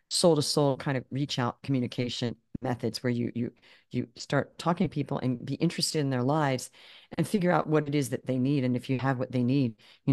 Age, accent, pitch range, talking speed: 40-59, American, 125-160 Hz, 235 wpm